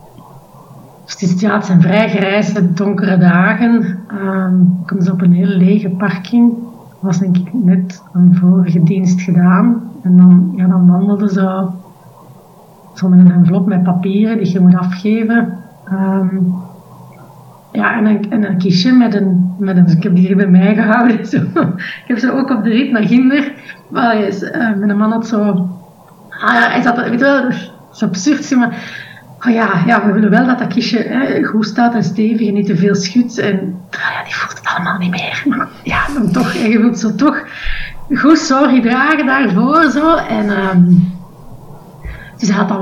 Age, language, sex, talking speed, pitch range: 30-49, Dutch, female, 180 wpm, 180-225 Hz